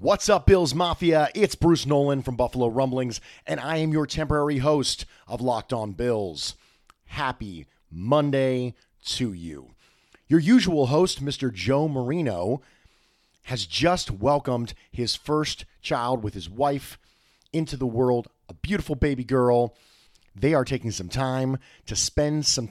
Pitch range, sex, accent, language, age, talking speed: 115-145 Hz, male, American, English, 40-59, 145 wpm